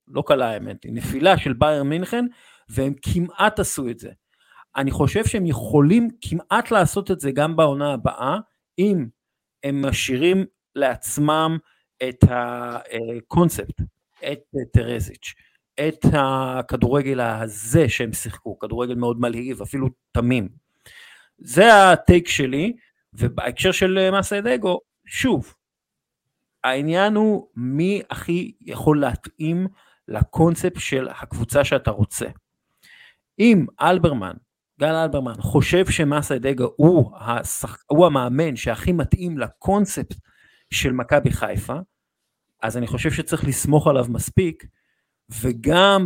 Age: 50-69